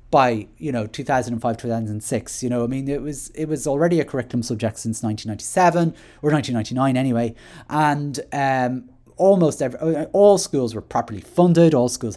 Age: 30-49